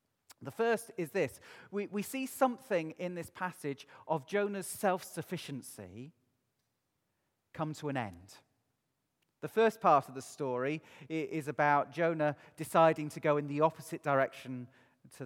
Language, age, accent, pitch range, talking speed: English, 40-59, British, 120-175 Hz, 140 wpm